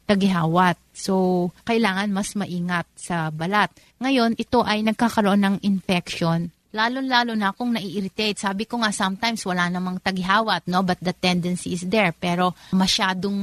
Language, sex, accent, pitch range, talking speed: Filipino, female, native, 180-210 Hz, 150 wpm